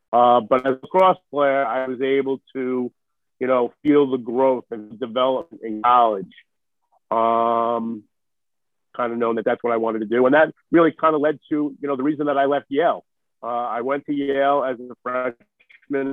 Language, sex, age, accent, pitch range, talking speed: English, male, 50-69, American, 120-145 Hz, 195 wpm